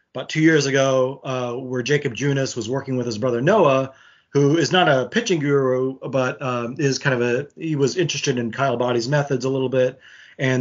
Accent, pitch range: American, 125-145 Hz